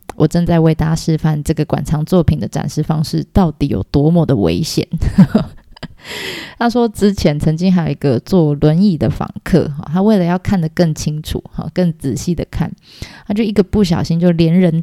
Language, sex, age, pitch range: Chinese, female, 20-39, 155-185 Hz